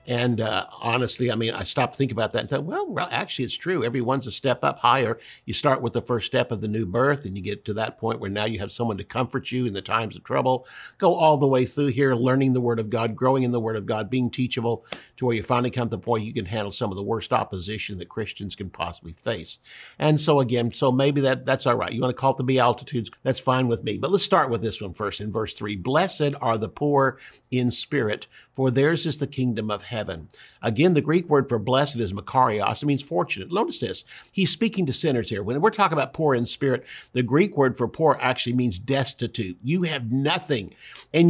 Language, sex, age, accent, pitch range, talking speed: English, male, 50-69, American, 120-155 Hz, 250 wpm